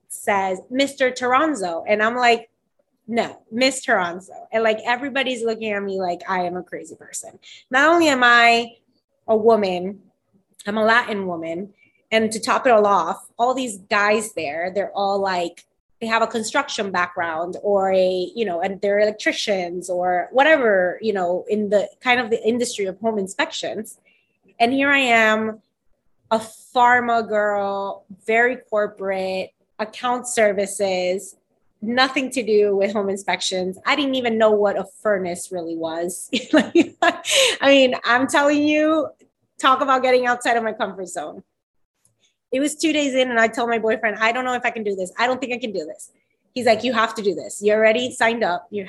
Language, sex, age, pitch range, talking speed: English, female, 20-39, 195-250 Hz, 180 wpm